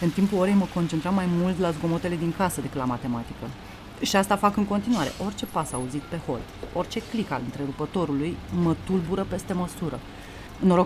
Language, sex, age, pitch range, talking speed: Romanian, female, 30-49, 170-260 Hz, 180 wpm